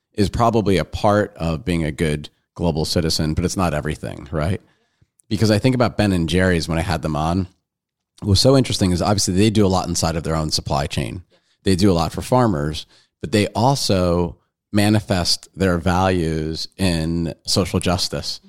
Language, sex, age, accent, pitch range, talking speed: English, male, 40-59, American, 85-110 Hz, 190 wpm